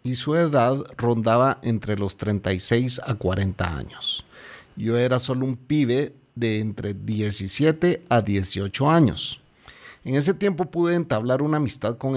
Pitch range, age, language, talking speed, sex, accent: 110-140 Hz, 40-59, Spanish, 145 wpm, male, Mexican